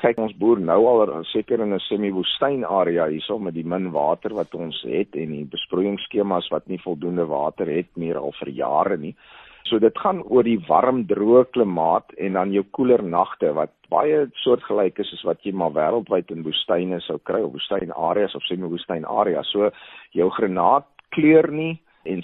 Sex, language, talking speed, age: male, Swedish, 185 wpm, 50-69